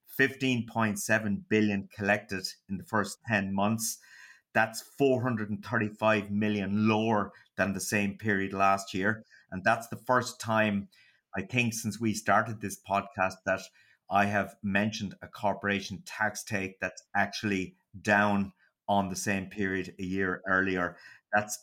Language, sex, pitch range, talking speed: English, male, 95-110 Hz, 135 wpm